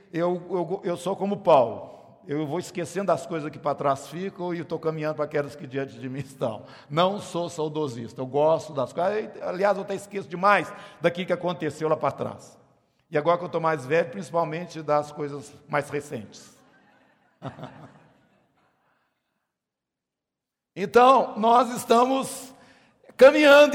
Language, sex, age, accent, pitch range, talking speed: Portuguese, male, 60-79, Brazilian, 155-225 Hz, 145 wpm